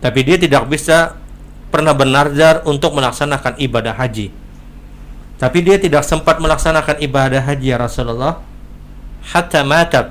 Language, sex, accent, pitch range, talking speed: Indonesian, male, native, 115-145 Hz, 125 wpm